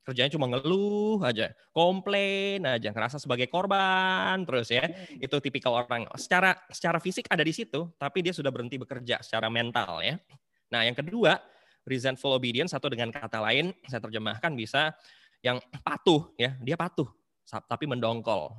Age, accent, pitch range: 20-39, Indonesian, 115-150 Hz